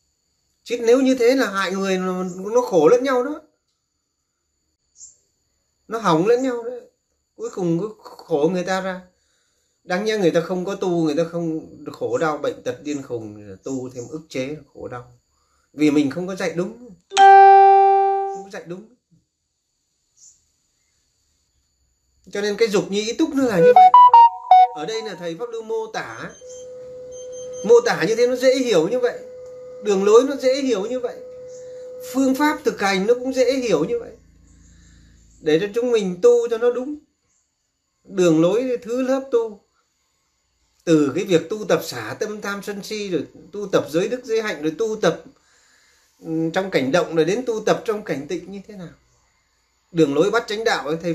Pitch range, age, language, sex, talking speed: 160-265 Hz, 30-49, Vietnamese, male, 180 wpm